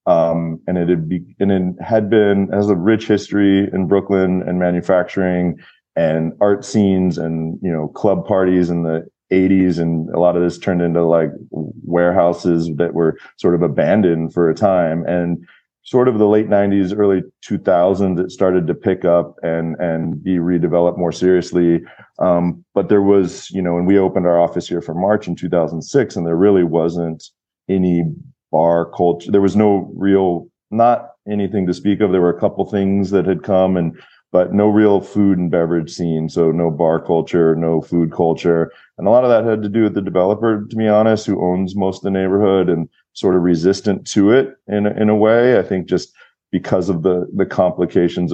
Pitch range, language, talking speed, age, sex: 85-100 Hz, English, 200 wpm, 30-49, male